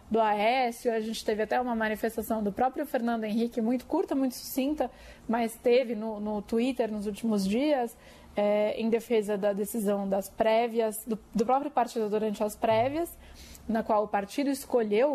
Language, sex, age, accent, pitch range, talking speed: Portuguese, female, 20-39, Brazilian, 215-250 Hz, 165 wpm